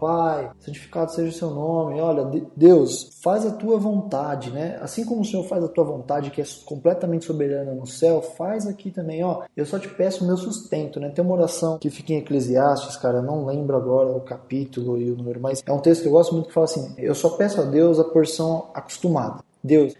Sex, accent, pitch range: male, Brazilian, 140-170 Hz